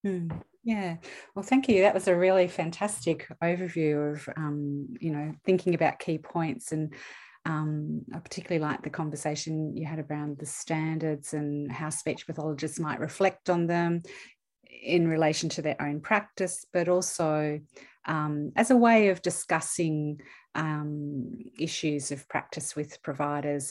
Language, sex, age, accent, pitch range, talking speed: English, female, 30-49, Australian, 145-165 Hz, 150 wpm